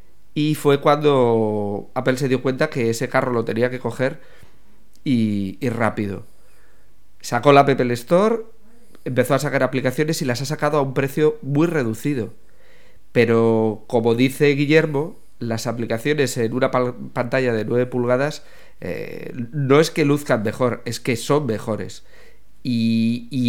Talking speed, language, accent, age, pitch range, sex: 150 wpm, English, Spanish, 30-49, 115-140 Hz, male